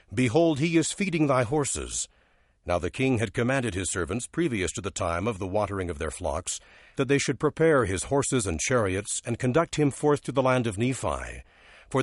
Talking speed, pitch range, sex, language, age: 205 wpm, 100-135 Hz, male, English, 60-79